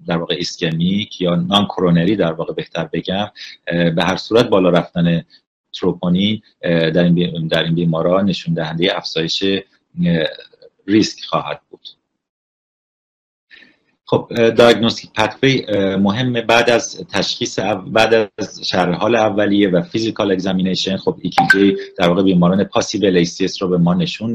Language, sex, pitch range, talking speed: Persian, male, 90-110 Hz, 125 wpm